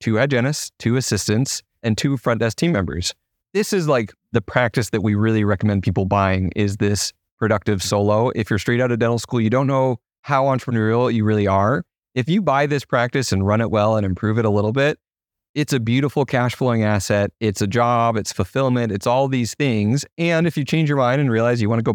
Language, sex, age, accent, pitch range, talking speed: English, male, 30-49, American, 105-135 Hz, 220 wpm